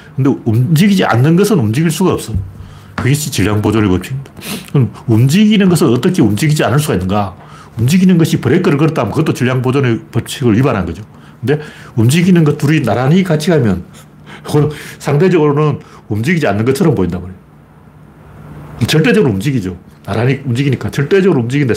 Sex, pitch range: male, 110-165 Hz